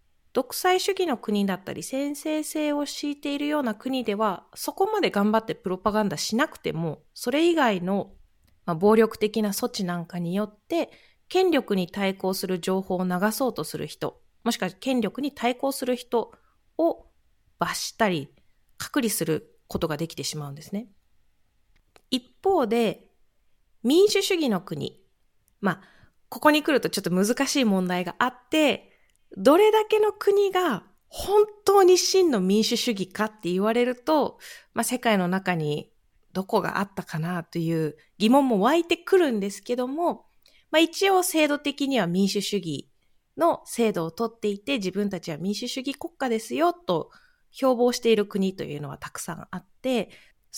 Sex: female